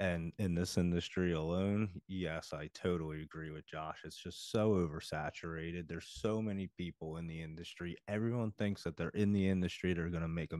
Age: 30-49